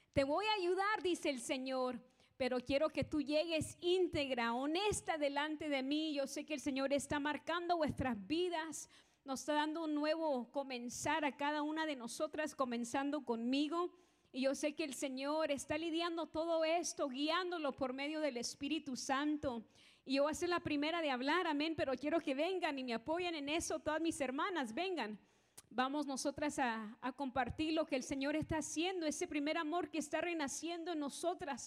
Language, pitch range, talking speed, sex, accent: English, 280-340 Hz, 185 wpm, female, American